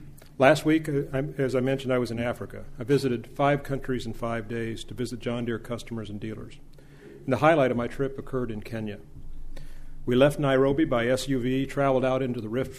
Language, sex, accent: English, male, American